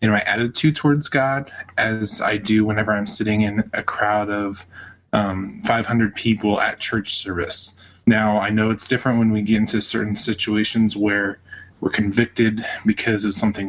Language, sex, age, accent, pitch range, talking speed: English, male, 20-39, American, 105-115 Hz, 165 wpm